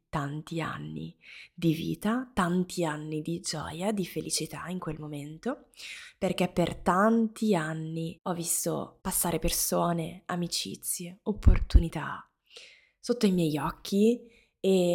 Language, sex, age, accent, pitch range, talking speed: Italian, female, 20-39, native, 170-210 Hz, 110 wpm